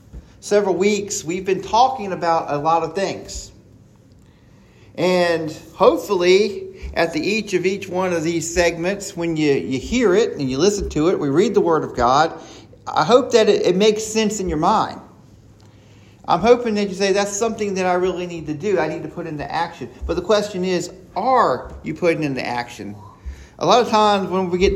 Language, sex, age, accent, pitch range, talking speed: English, male, 50-69, American, 145-200 Hz, 200 wpm